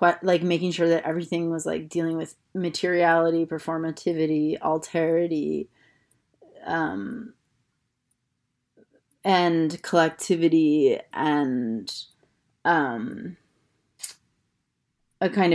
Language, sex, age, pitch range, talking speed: English, female, 30-49, 150-180 Hz, 75 wpm